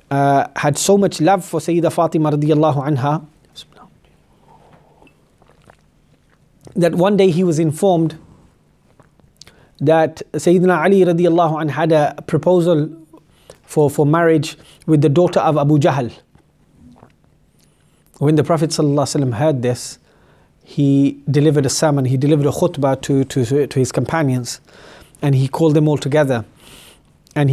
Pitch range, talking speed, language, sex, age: 140-165 Hz, 120 wpm, English, male, 30-49